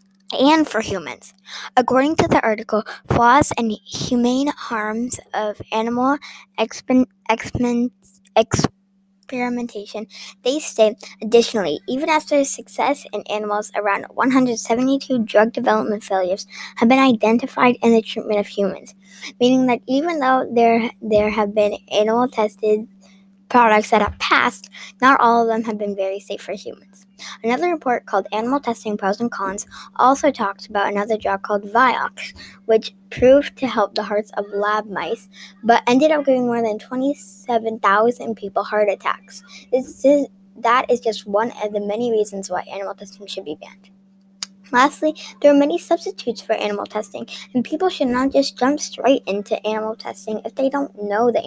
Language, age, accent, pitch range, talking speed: English, 10-29, American, 205-250 Hz, 155 wpm